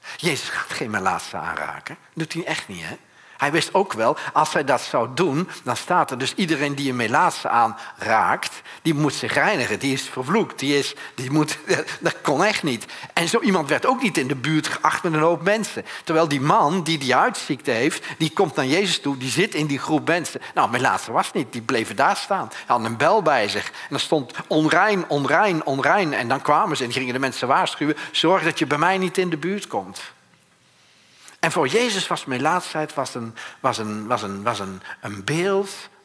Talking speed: 215 wpm